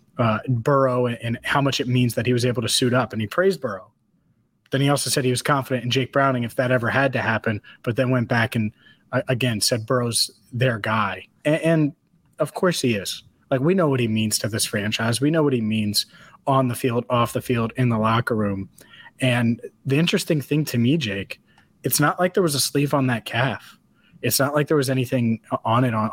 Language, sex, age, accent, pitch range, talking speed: English, male, 30-49, American, 115-140 Hz, 235 wpm